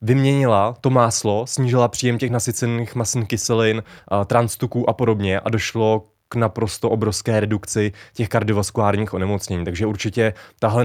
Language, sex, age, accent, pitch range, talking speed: Czech, male, 20-39, native, 105-120 Hz, 140 wpm